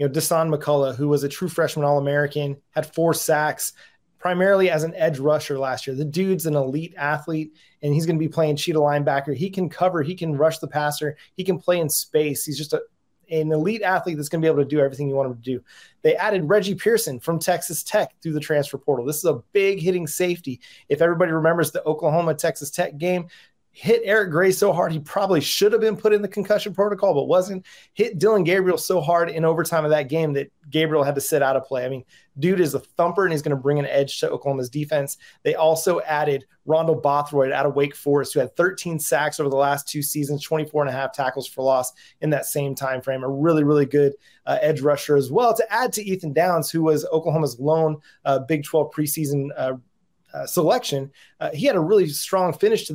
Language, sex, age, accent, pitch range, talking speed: English, male, 30-49, American, 145-175 Hz, 230 wpm